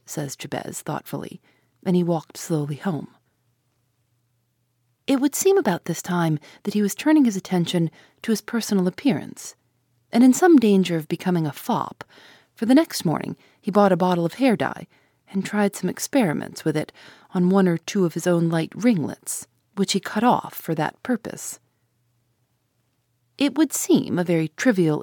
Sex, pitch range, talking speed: female, 135-205 Hz, 170 wpm